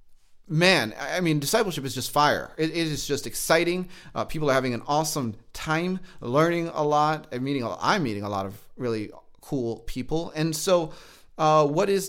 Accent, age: American, 30-49